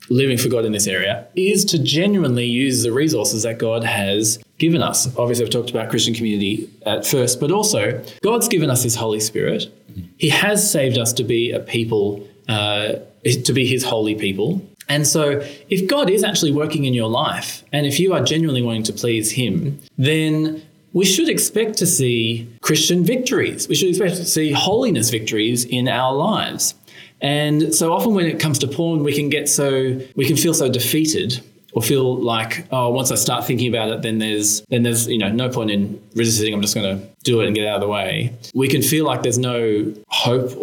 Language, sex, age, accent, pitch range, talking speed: English, male, 20-39, Australian, 115-155 Hz, 205 wpm